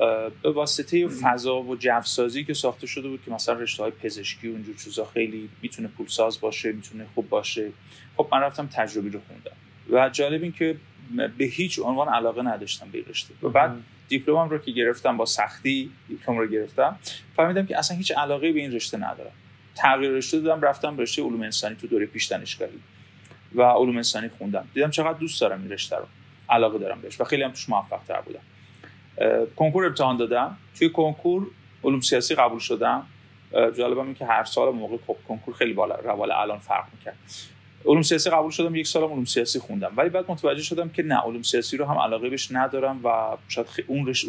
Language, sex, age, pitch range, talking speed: Persian, male, 30-49, 115-150 Hz, 185 wpm